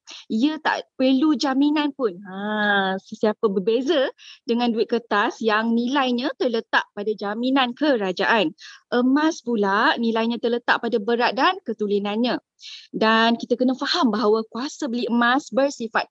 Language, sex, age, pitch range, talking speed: Malay, female, 20-39, 215-280 Hz, 125 wpm